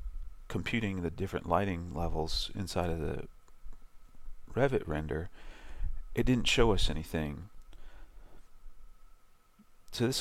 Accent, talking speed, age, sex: American, 100 wpm, 40-59, male